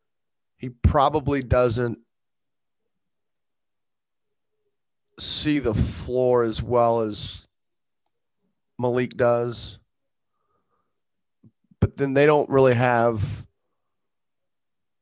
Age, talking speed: 30-49, 70 wpm